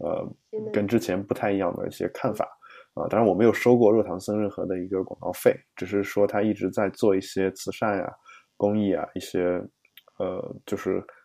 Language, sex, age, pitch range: Chinese, male, 20-39, 95-110 Hz